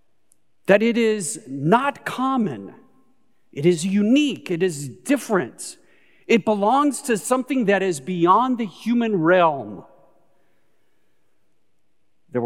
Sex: male